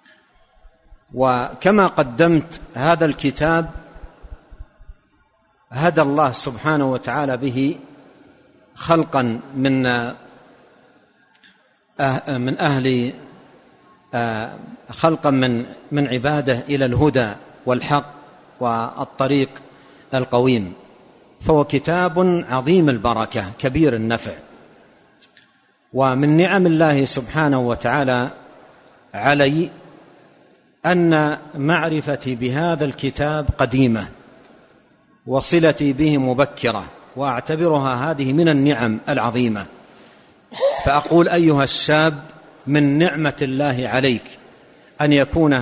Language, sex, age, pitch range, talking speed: Arabic, male, 50-69, 130-155 Hz, 75 wpm